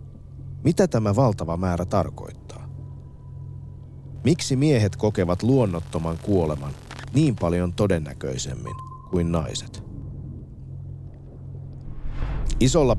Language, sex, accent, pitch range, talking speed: Finnish, male, native, 90-125 Hz, 75 wpm